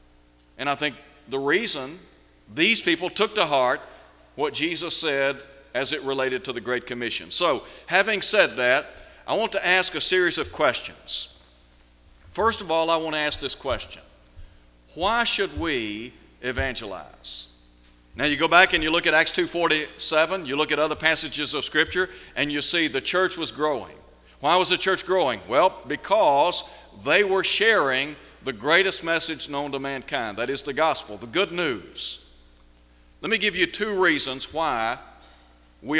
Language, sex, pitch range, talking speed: English, male, 110-180 Hz, 165 wpm